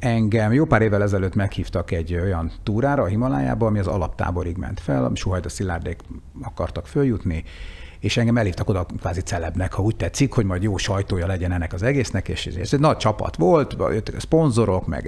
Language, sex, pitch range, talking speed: Hungarian, male, 95-125 Hz, 185 wpm